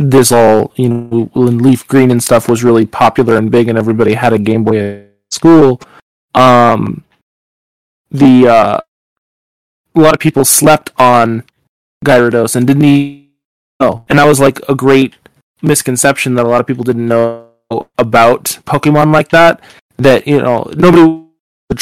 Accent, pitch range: American, 115-140 Hz